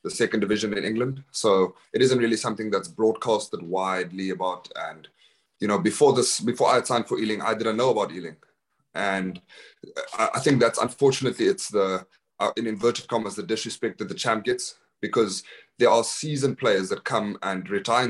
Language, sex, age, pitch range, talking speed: English, male, 30-49, 95-110 Hz, 185 wpm